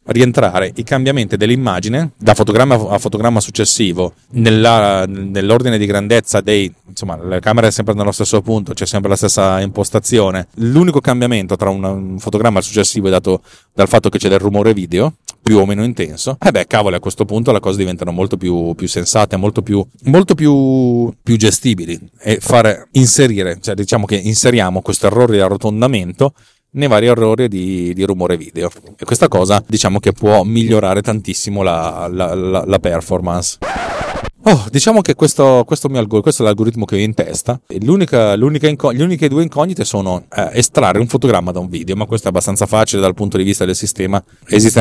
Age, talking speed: 30-49, 185 wpm